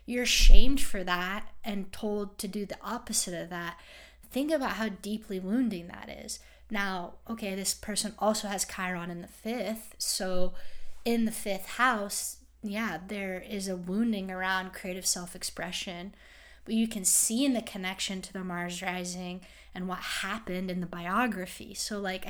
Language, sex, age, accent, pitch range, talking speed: English, female, 10-29, American, 180-215 Hz, 165 wpm